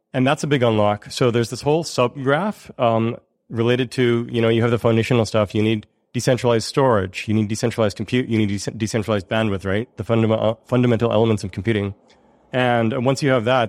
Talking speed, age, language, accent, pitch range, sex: 195 wpm, 30-49, English, American, 110-125 Hz, male